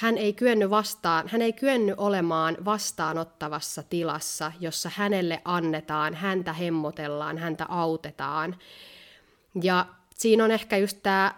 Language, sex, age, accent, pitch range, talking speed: Finnish, female, 30-49, native, 165-210 Hz, 115 wpm